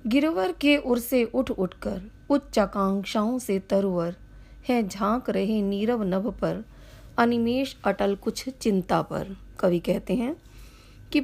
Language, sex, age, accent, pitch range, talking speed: Hindi, female, 40-59, native, 190-240 Hz, 130 wpm